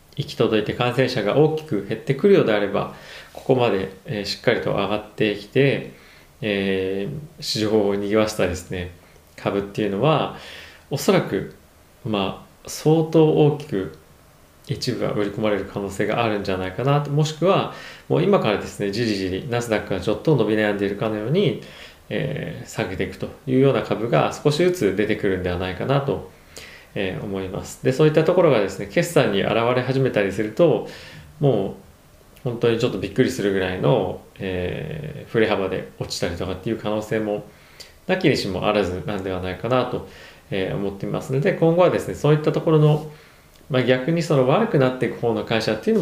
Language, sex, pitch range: Japanese, male, 95-135 Hz